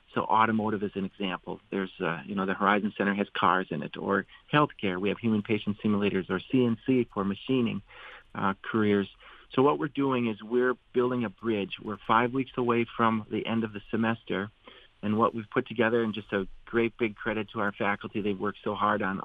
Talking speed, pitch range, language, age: 210 wpm, 105-120 Hz, English, 40-59